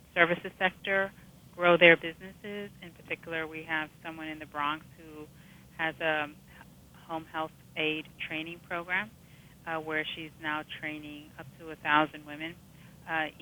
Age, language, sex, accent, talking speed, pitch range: 30-49, English, female, American, 140 wpm, 155-170 Hz